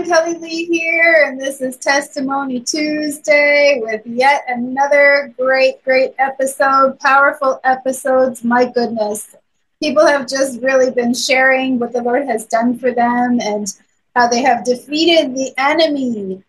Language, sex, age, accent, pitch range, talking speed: English, female, 30-49, American, 230-285 Hz, 140 wpm